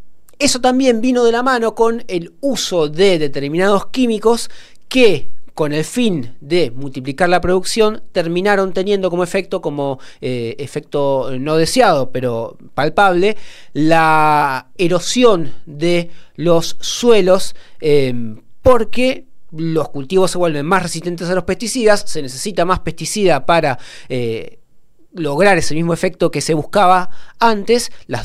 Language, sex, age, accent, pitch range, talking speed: Spanish, male, 30-49, Argentinian, 145-195 Hz, 130 wpm